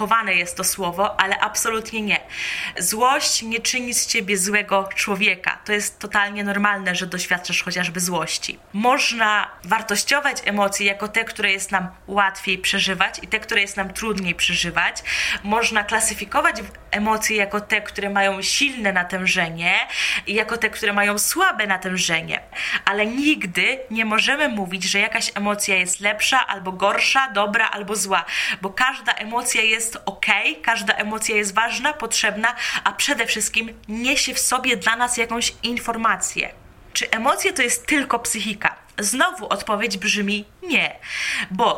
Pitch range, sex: 195-230 Hz, female